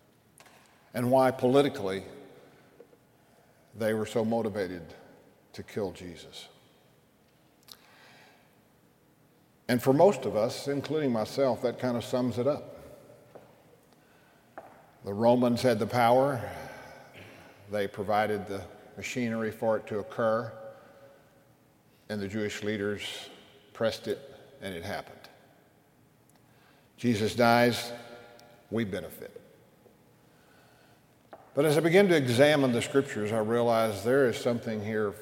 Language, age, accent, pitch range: English, 50-69, American, 105-135 Hz